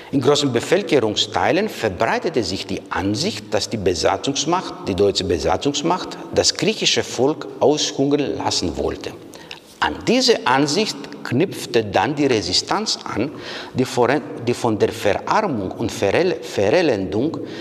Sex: male